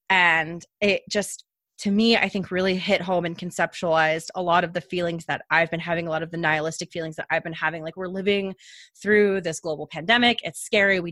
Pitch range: 160-195 Hz